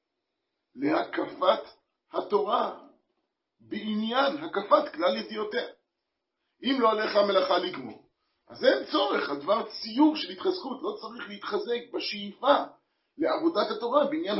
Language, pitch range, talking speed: Hebrew, 225-335 Hz, 105 wpm